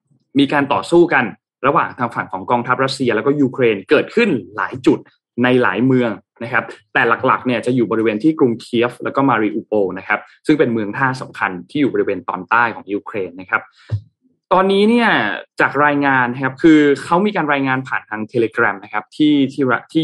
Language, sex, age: Thai, male, 20-39